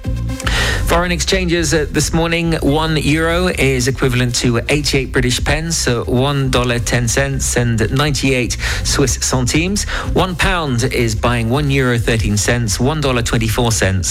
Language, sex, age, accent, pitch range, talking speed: English, male, 40-59, British, 100-140 Hz, 110 wpm